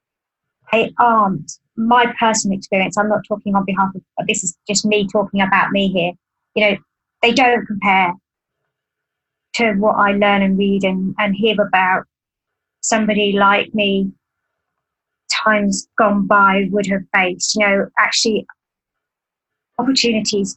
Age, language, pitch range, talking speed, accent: 30-49, English, 195-225 Hz, 135 wpm, British